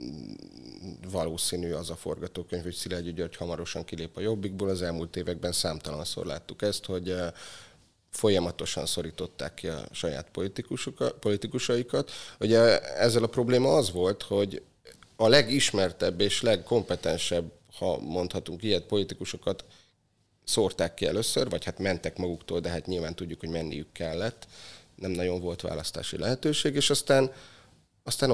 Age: 30-49